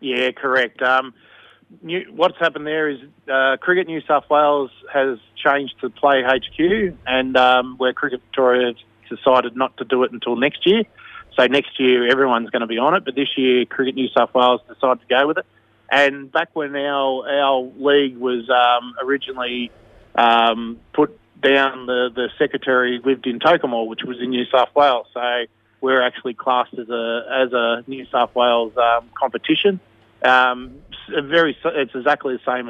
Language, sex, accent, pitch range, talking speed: English, male, Australian, 120-140 Hz, 175 wpm